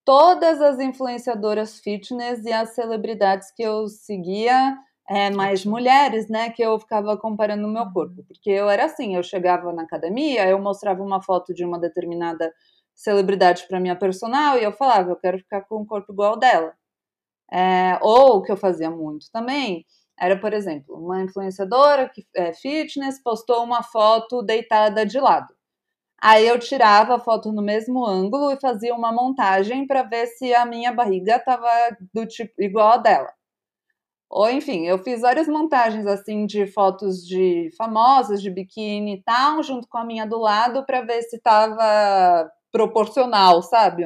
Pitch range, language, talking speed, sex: 195-245 Hz, Portuguese, 170 wpm, female